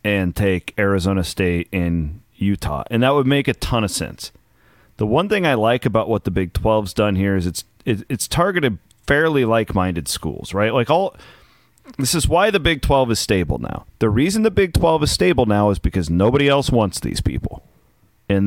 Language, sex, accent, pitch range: English, male, American, 95-130 Hz